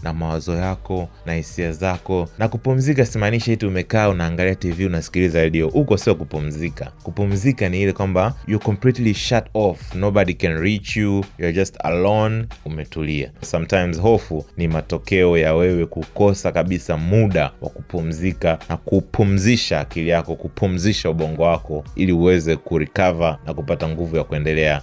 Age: 30-49